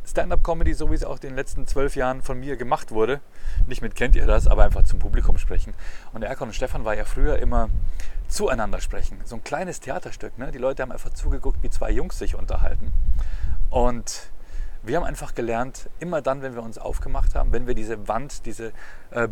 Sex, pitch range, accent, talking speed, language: male, 85-125 Hz, German, 210 wpm, German